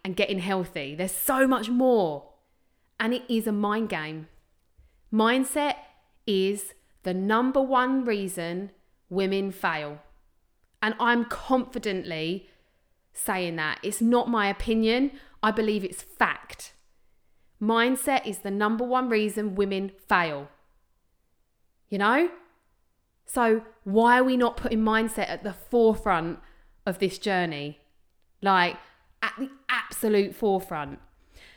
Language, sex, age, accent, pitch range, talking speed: English, female, 30-49, British, 175-230 Hz, 120 wpm